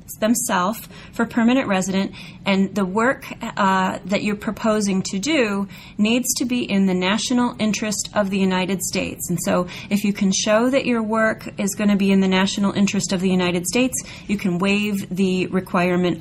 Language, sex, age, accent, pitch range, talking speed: English, female, 30-49, American, 180-220 Hz, 185 wpm